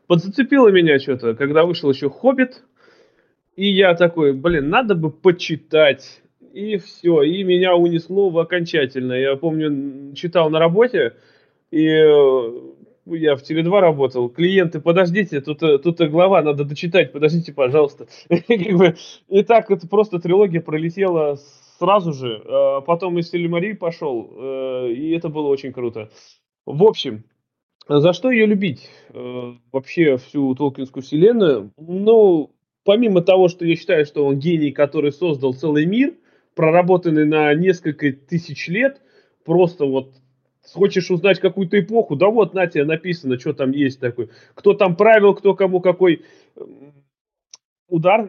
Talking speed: 140 wpm